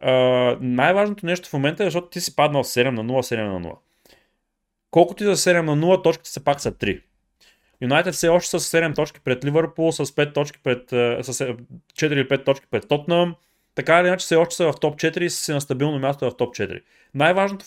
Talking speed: 225 wpm